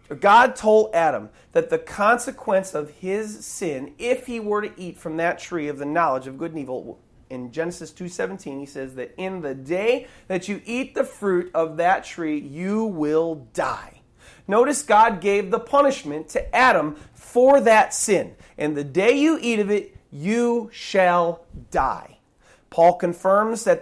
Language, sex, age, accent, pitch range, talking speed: English, male, 30-49, American, 155-220 Hz, 170 wpm